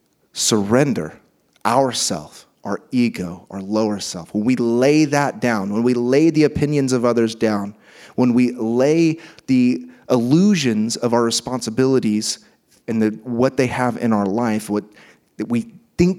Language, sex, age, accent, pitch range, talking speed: English, male, 30-49, American, 110-140 Hz, 140 wpm